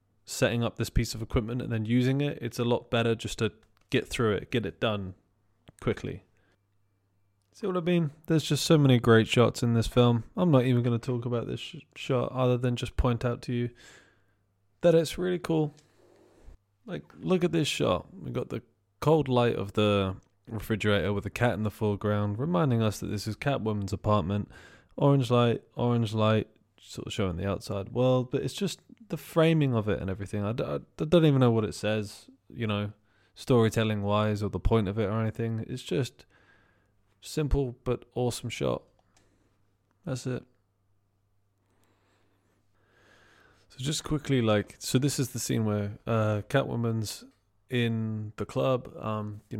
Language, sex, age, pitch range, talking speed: English, male, 20-39, 105-125 Hz, 175 wpm